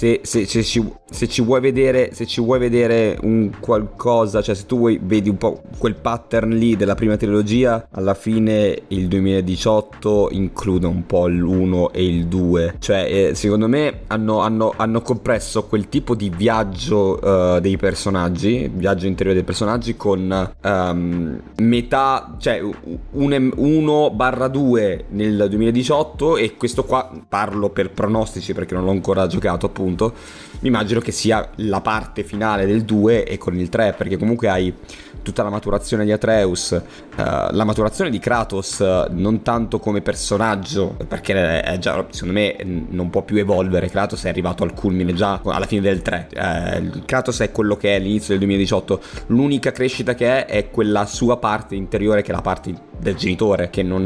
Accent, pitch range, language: native, 95-115 Hz, Italian